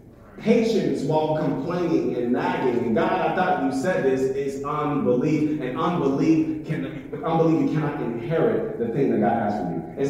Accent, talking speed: American, 165 wpm